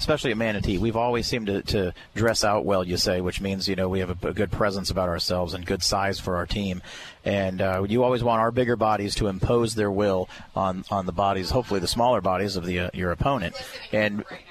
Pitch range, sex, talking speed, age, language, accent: 95-120 Hz, male, 235 wpm, 30-49, English, American